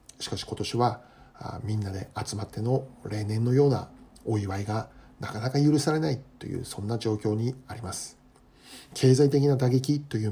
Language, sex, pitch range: Japanese, male, 105-130 Hz